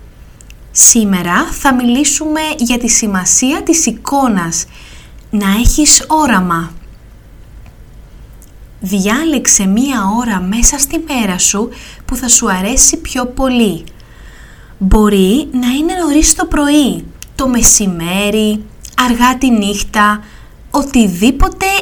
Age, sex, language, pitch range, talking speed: 20-39, female, Greek, 200-295 Hz, 100 wpm